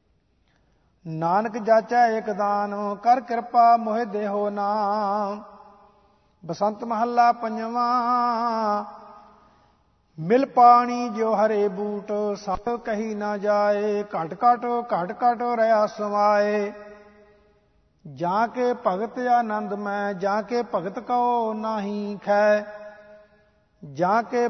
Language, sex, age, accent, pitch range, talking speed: English, male, 50-69, Indian, 205-235 Hz, 90 wpm